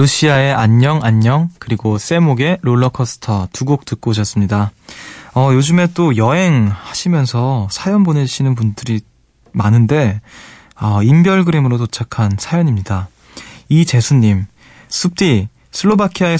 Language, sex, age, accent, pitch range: Korean, male, 20-39, native, 110-145 Hz